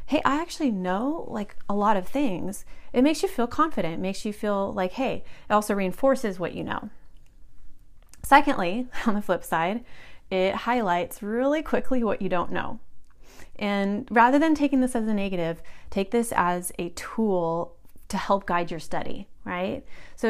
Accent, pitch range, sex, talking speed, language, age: American, 180-235 Hz, female, 175 wpm, English, 30-49